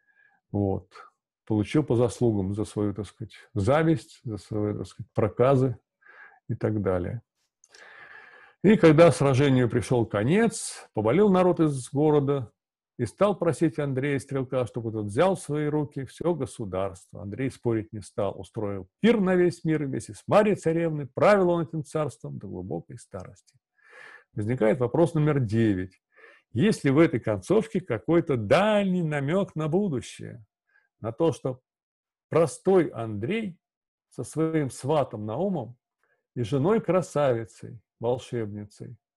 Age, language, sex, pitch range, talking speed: 50-69, Russian, male, 115-170 Hz, 130 wpm